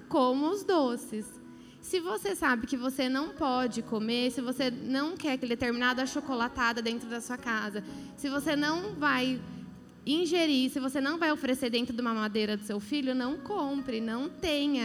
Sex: female